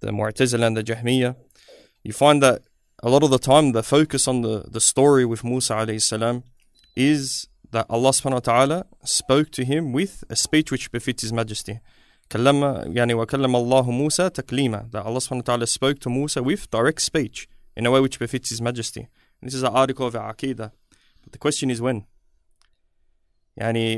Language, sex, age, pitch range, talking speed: English, male, 20-39, 115-140 Hz, 170 wpm